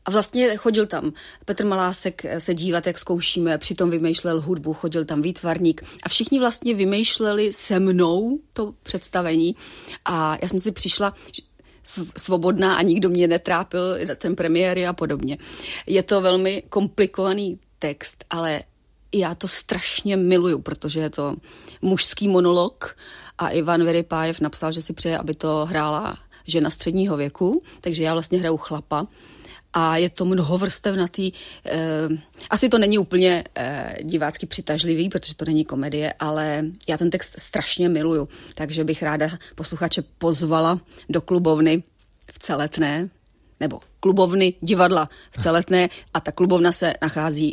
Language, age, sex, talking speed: Czech, 30-49, female, 140 wpm